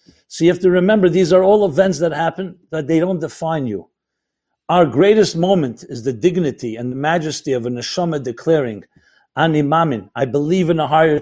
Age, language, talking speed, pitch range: 50-69, English, 195 wpm, 155-190 Hz